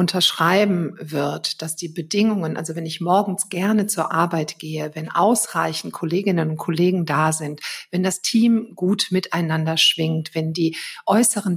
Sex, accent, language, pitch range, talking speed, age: female, German, German, 160-200 Hz, 150 wpm, 50-69